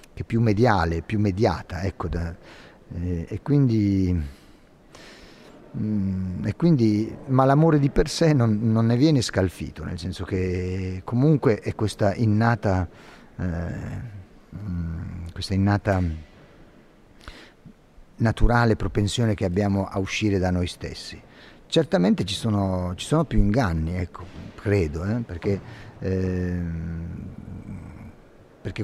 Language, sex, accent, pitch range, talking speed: Italian, male, native, 95-115 Hz, 115 wpm